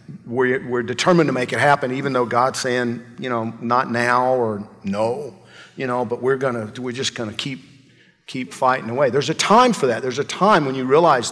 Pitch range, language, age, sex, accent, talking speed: 120-150 Hz, English, 50-69, male, American, 210 wpm